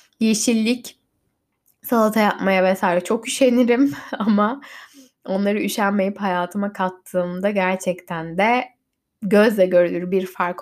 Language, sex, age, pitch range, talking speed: Turkish, female, 10-29, 185-230 Hz, 95 wpm